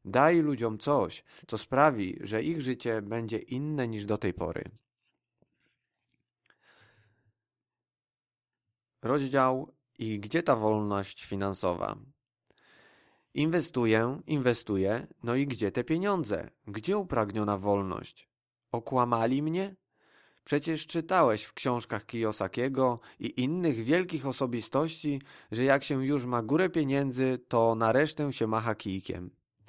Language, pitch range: Polish, 115-145 Hz